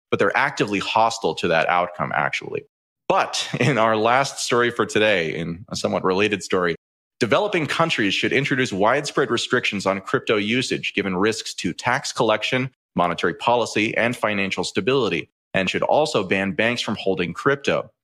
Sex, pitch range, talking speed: male, 95-125 Hz, 155 wpm